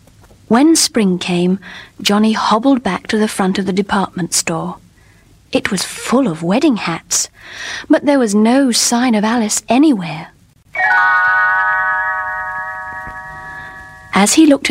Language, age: English, 40-59